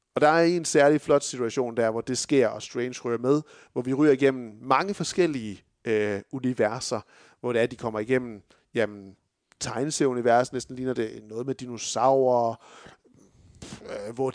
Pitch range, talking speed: 120-155 Hz, 165 wpm